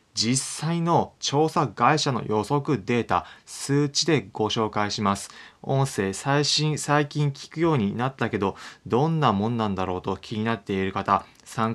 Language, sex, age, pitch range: Japanese, male, 20-39, 105-145 Hz